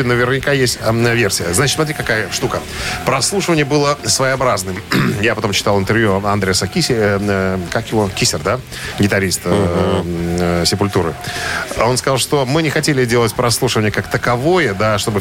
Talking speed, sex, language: 160 wpm, male, Russian